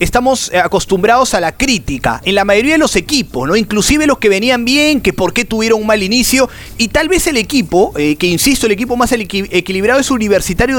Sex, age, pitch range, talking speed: male, 30-49, 180-260 Hz, 210 wpm